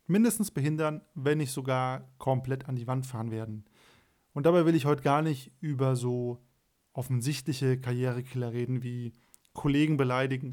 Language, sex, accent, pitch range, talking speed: German, male, German, 130-150 Hz, 150 wpm